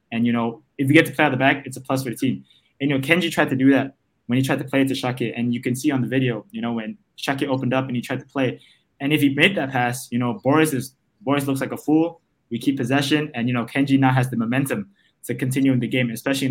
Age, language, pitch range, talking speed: 20-39, English, 120-145 Hz, 305 wpm